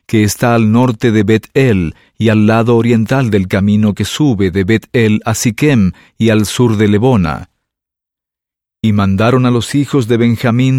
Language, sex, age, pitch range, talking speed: English, male, 50-69, 105-125 Hz, 165 wpm